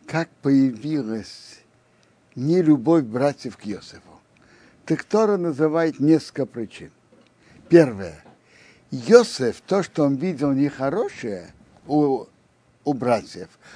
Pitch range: 130-175 Hz